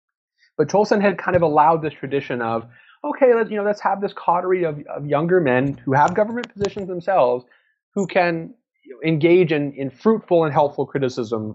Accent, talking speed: American, 190 wpm